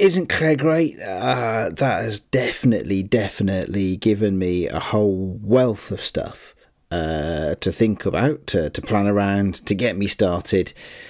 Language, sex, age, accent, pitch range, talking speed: English, male, 40-59, British, 95-125 Hz, 145 wpm